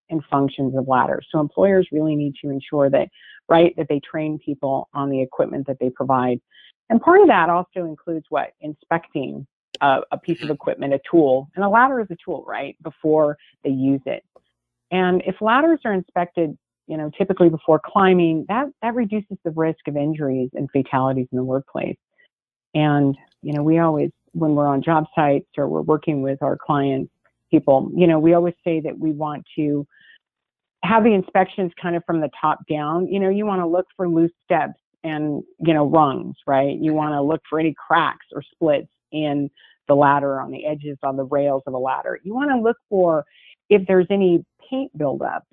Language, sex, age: English, female, 40-59